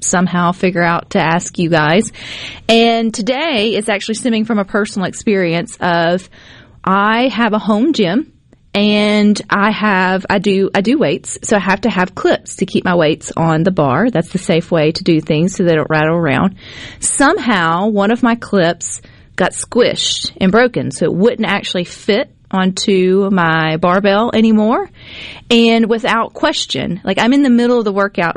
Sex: female